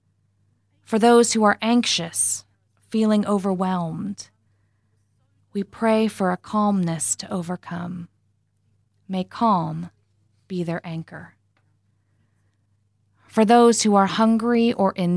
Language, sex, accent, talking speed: English, female, American, 105 wpm